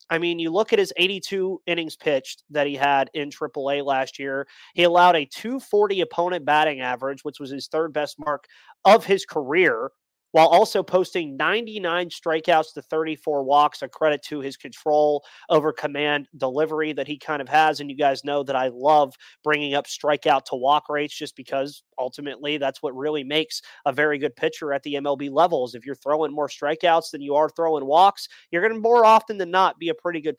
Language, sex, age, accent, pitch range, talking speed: English, male, 30-49, American, 140-175 Hz, 200 wpm